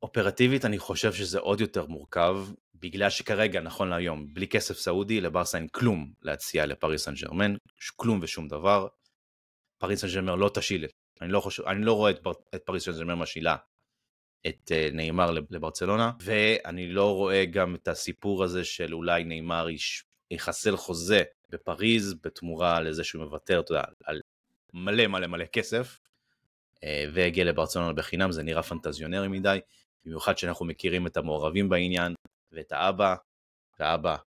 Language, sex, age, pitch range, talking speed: Hebrew, male, 30-49, 80-100 Hz, 150 wpm